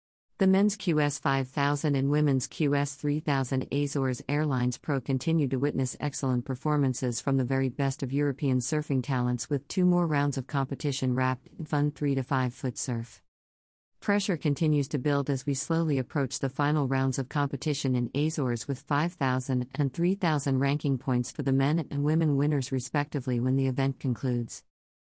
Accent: American